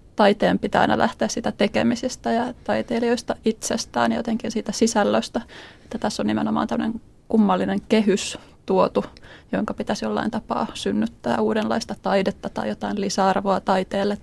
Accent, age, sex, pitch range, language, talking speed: native, 20-39, female, 185-230 Hz, Finnish, 135 wpm